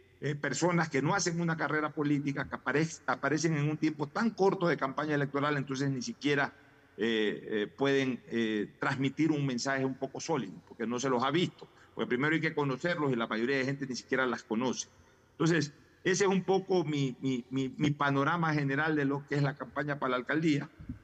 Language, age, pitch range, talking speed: Spanish, 50-69, 120-150 Hz, 205 wpm